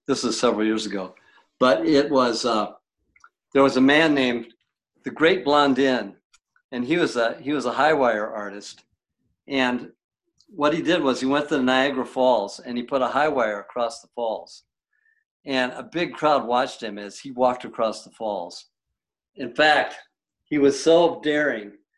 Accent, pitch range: American, 125-150 Hz